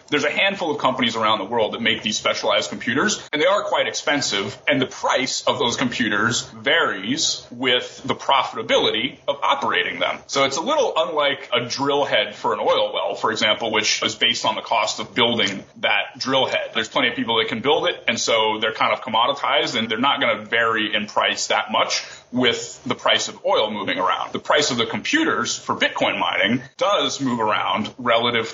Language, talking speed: English, 210 wpm